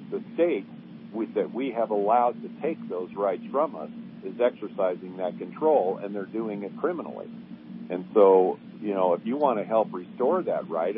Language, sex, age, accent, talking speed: English, male, 50-69, American, 180 wpm